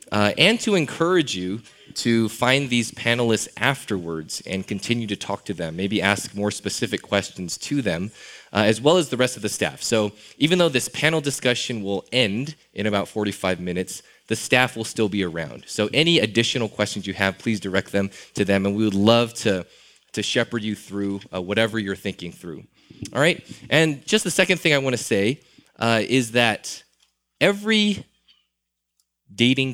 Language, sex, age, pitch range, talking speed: English, male, 20-39, 100-125 Hz, 180 wpm